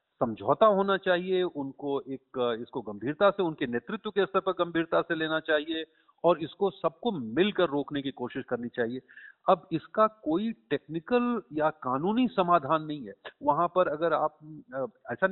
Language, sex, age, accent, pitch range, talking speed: Hindi, male, 40-59, native, 140-205 Hz, 155 wpm